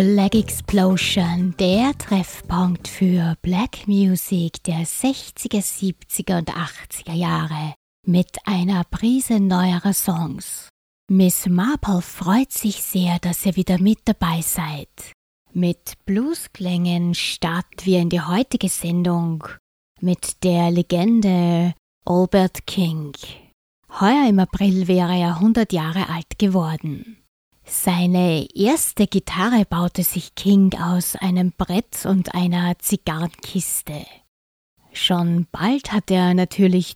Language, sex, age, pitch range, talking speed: German, female, 20-39, 170-195 Hz, 110 wpm